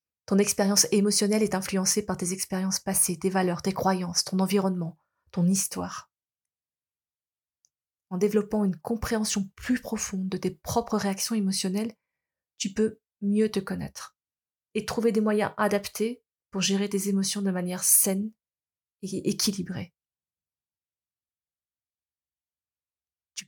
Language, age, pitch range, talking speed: French, 30-49, 180-215 Hz, 125 wpm